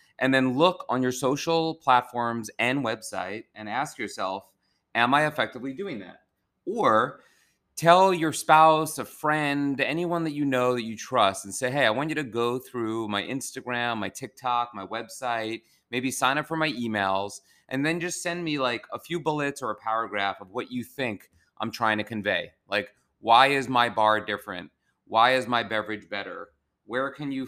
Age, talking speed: 30-49, 185 wpm